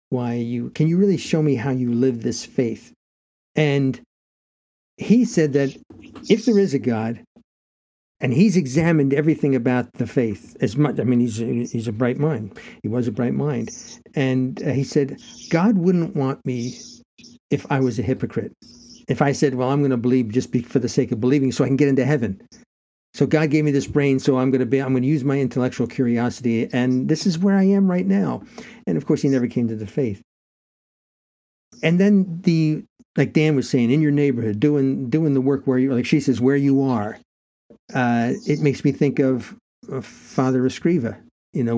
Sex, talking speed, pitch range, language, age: male, 205 wpm, 120-155 Hz, English, 50-69